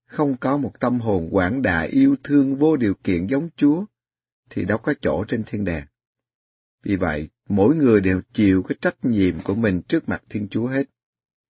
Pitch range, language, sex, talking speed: 95-130 Hz, Vietnamese, male, 195 wpm